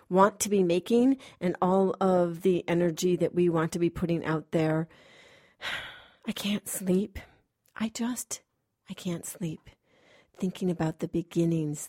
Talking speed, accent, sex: 145 wpm, American, female